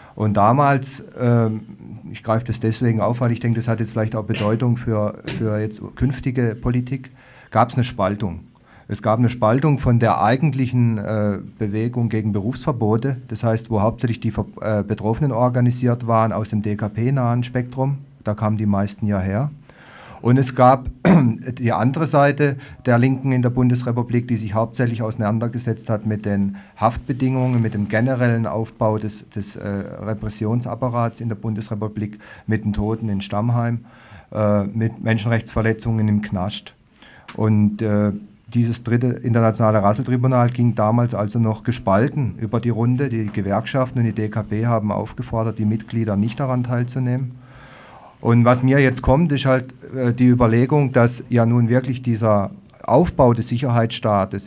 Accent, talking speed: German, 150 wpm